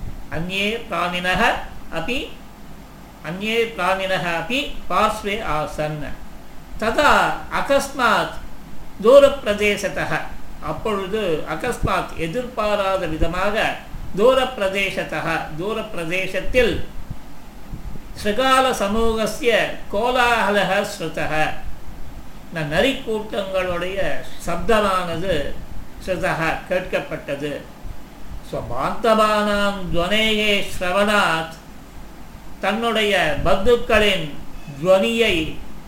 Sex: male